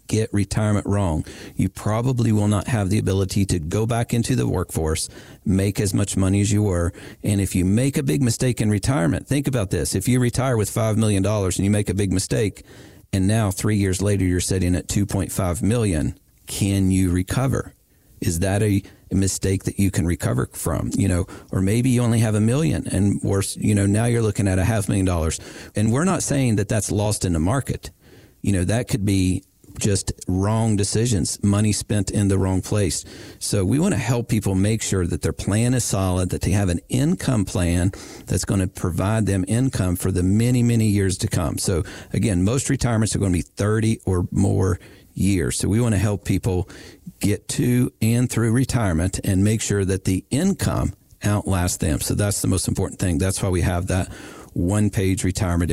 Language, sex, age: English, male, 40-59